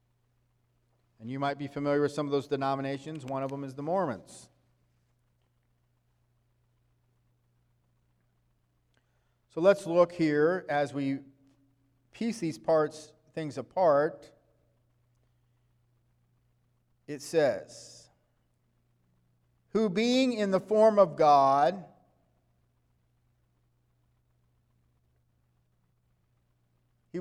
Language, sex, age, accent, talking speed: English, male, 50-69, American, 80 wpm